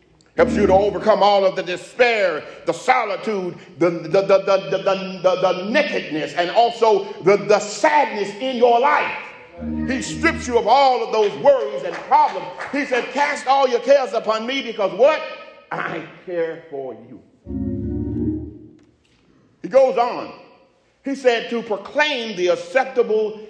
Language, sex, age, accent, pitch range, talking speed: English, male, 40-59, American, 190-275 Hz, 150 wpm